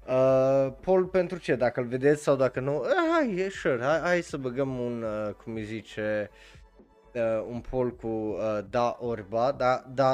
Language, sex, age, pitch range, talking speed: Romanian, male, 20-39, 110-140 Hz, 180 wpm